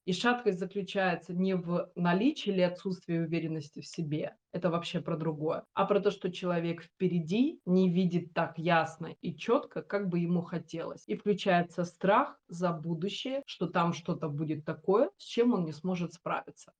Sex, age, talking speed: female, 20-39, 170 wpm